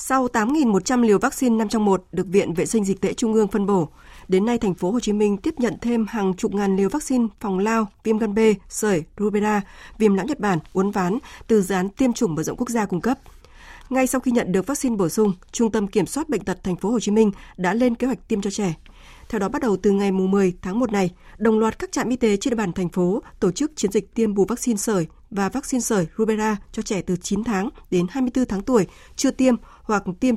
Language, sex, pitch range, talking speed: Vietnamese, female, 190-235 Hz, 250 wpm